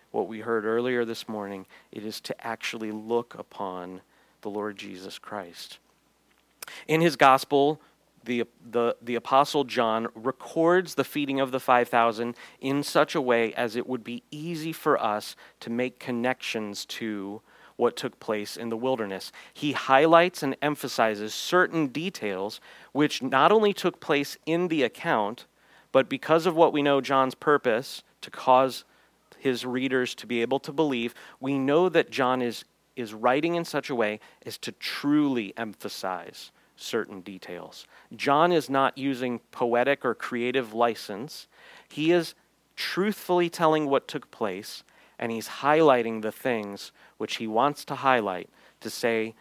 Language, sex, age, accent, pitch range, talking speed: English, male, 40-59, American, 110-145 Hz, 155 wpm